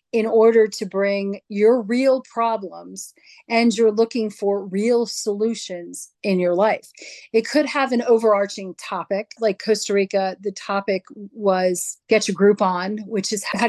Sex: female